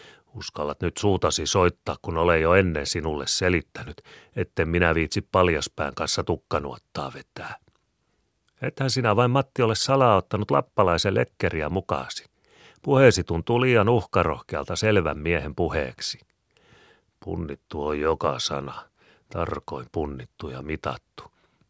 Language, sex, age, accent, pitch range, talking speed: Finnish, male, 40-59, native, 75-105 Hz, 115 wpm